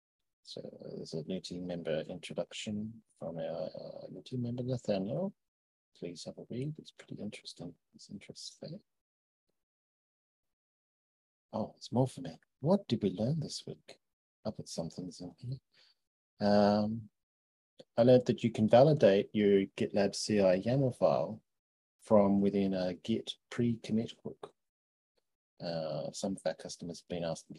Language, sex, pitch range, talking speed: English, male, 85-110 Hz, 145 wpm